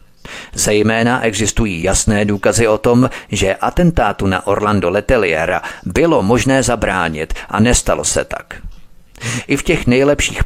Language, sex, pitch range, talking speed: Czech, male, 95-125 Hz, 125 wpm